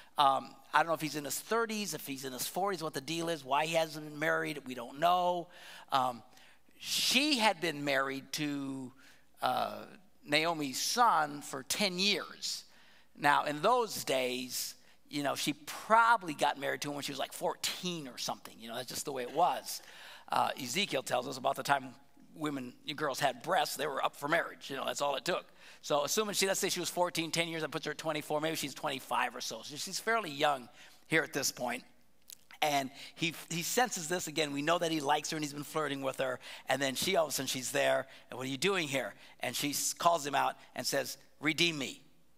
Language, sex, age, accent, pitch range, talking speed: English, male, 50-69, American, 140-175 Hz, 225 wpm